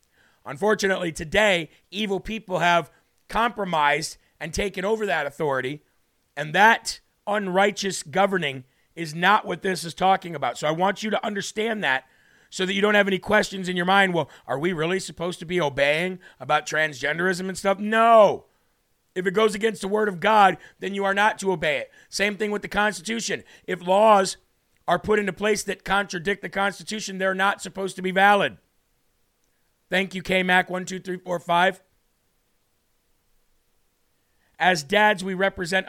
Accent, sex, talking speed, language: American, male, 160 wpm, English